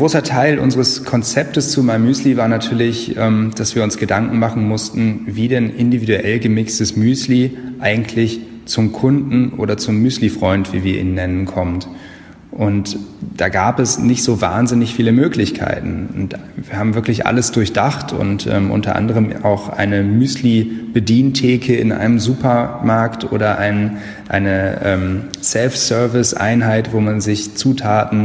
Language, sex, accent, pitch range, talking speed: German, male, German, 100-120 Hz, 135 wpm